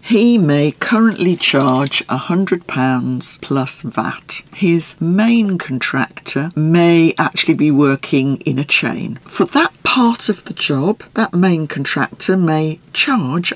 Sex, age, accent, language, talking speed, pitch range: female, 50-69, British, English, 125 wpm, 135-195 Hz